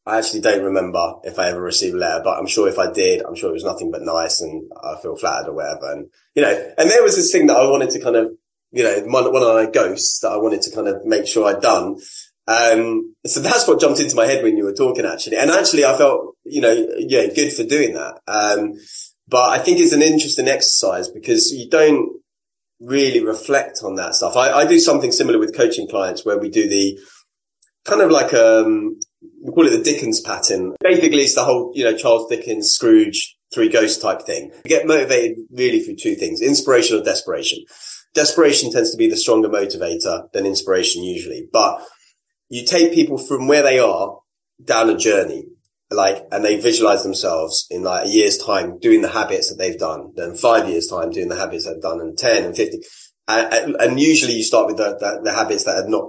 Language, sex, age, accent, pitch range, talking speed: English, male, 20-39, British, 310-385 Hz, 225 wpm